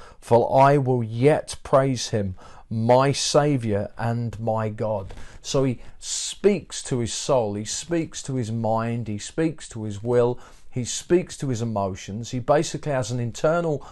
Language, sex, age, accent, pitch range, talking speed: English, male, 40-59, British, 115-155 Hz, 160 wpm